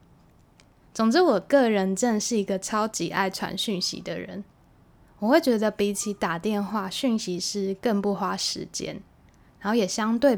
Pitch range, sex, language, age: 195-245 Hz, female, Chinese, 10-29